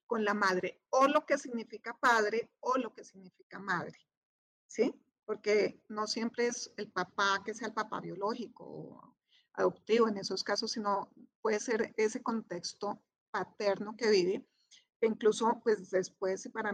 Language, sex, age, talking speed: Spanish, female, 30-49, 155 wpm